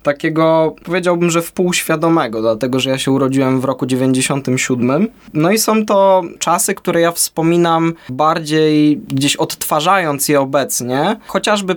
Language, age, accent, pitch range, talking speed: Polish, 20-39, native, 135-165 Hz, 135 wpm